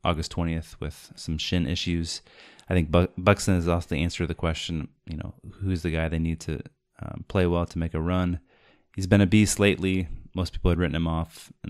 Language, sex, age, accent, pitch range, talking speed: English, male, 20-39, American, 80-95 Hz, 220 wpm